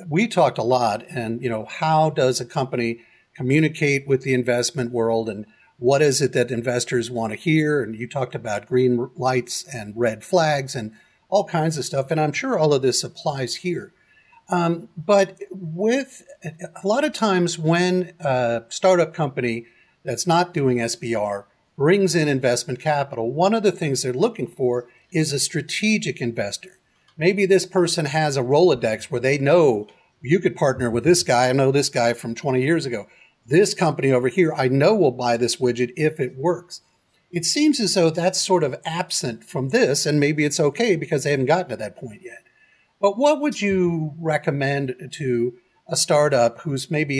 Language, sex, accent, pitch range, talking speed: English, male, American, 125-175 Hz, 185 wpm